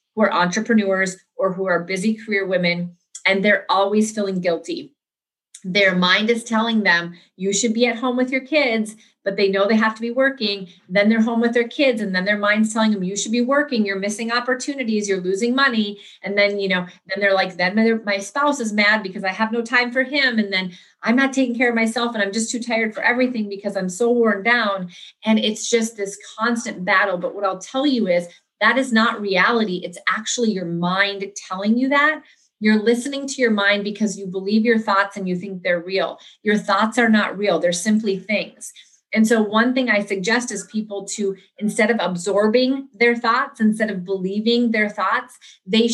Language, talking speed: English, 210 wpm